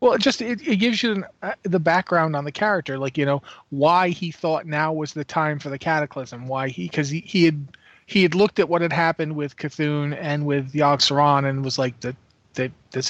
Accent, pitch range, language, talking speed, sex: American, 130-160 Hz, English, 235 wpm, male